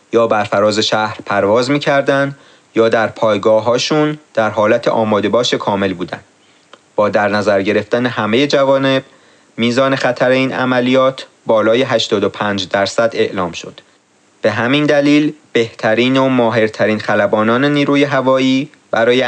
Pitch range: 110-130 Hz